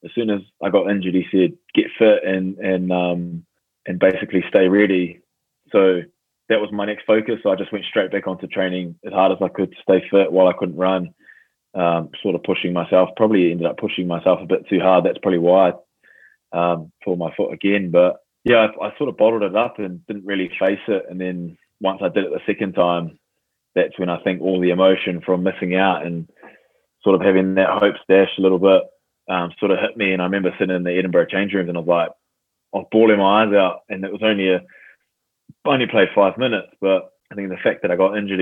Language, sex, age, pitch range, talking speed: English, male, 20-39, 90-95 Hz, 240 wpm